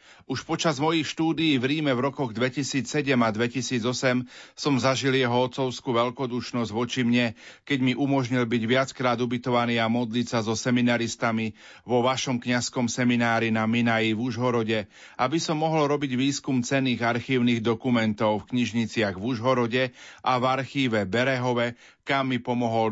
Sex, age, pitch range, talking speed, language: male, 40-59, 115-130 Hz, 145 wpm, Slovak